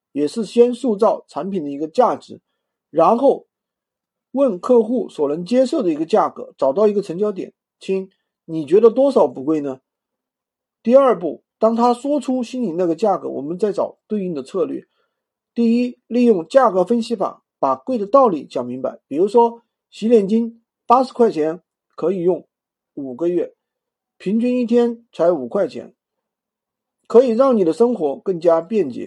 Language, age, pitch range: Chinese, 50-69, 180-255 Hz